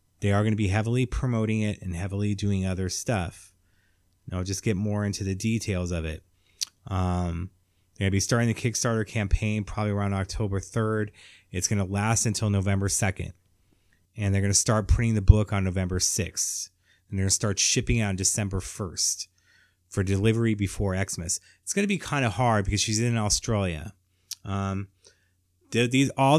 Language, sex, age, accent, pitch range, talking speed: English, male, 30-49, American, 95-110 Hz, 180 wpm